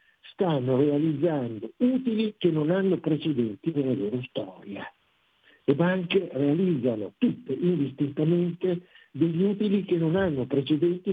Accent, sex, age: native, male, 60-79